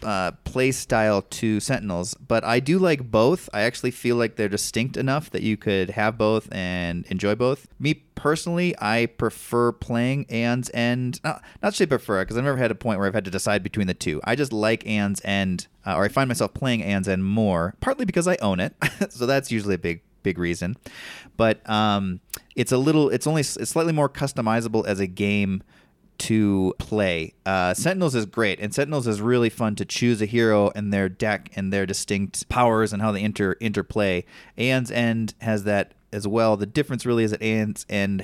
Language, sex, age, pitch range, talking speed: English, male, 30-49, 95-120 Hz, 200 wpm